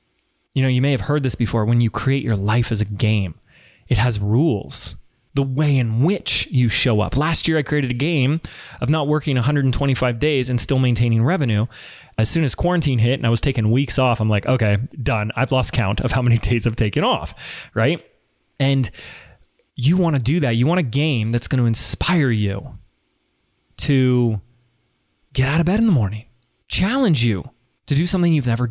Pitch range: 115-145 Hz